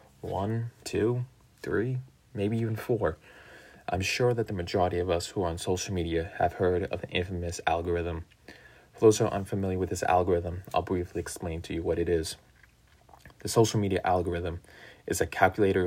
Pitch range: 90-110 Hz